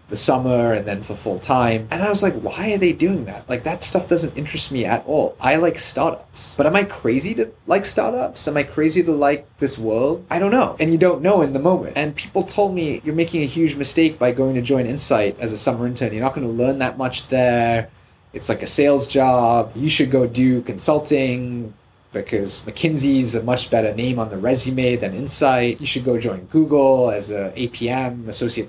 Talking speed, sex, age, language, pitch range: 220 wpm, male, 20-39, English, 120-150 Hz